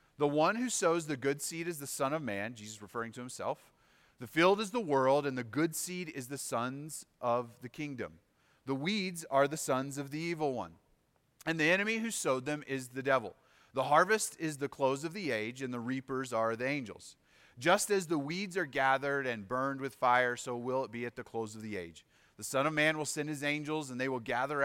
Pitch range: 115-150 Hz